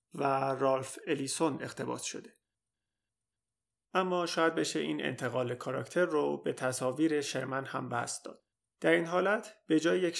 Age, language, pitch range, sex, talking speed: 30-49, Persian, 130-165 Hz, male, 140 wpm